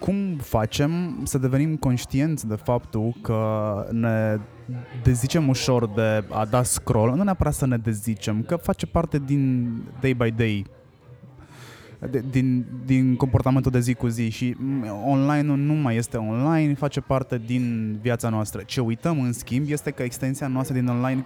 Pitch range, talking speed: 110-135 Hz, 155 wpm